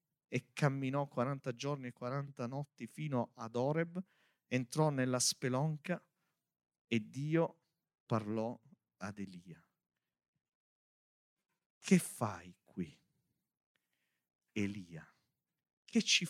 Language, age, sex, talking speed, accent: Italian, 50-69, male, 90 wpm, native